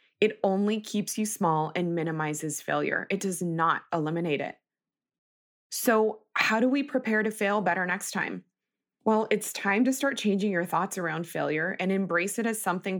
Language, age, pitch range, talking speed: English, 20-39, 180-230 Hz, 175 wpm